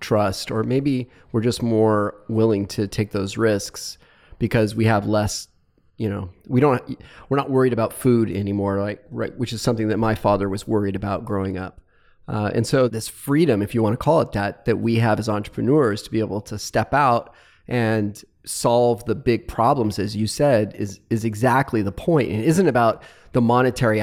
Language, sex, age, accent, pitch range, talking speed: English, male, 30-49, American, 105-130 Hz, 195 wpm